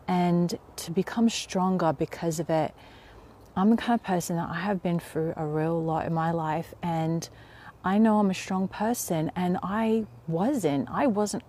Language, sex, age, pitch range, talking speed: English, female, 30-49, 165-195 Hz, 185 wpm